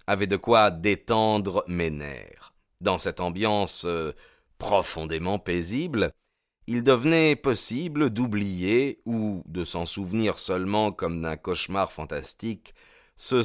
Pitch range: 85-110 Hz